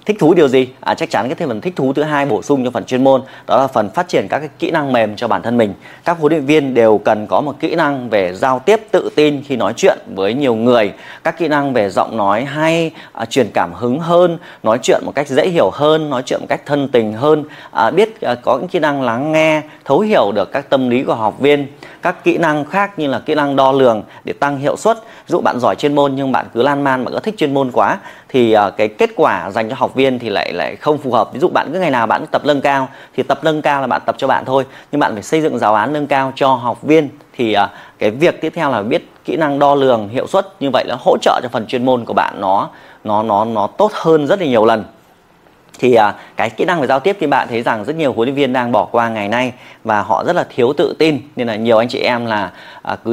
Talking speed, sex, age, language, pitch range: 280 wpm, male, 20-39, Vietnamese, 125-155 Hz